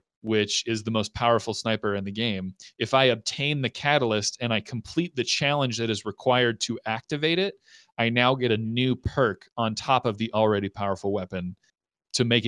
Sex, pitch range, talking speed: male, 105-125 Hz, 190 wpm